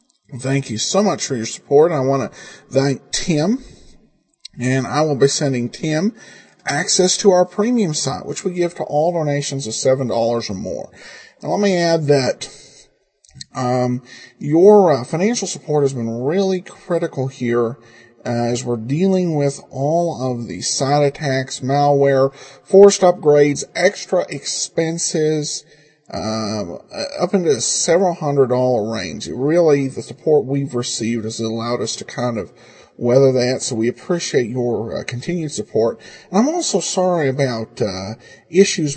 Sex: male